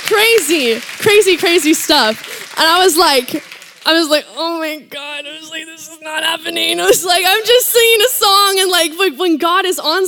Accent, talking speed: American, 210 wpm